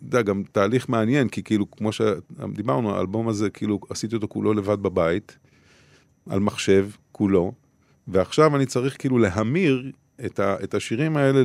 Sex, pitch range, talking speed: male, 100-140 Hz, 155 wpm